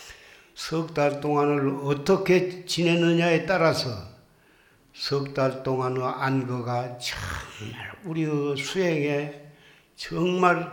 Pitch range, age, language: 130-155 Hz, 60-79, Korean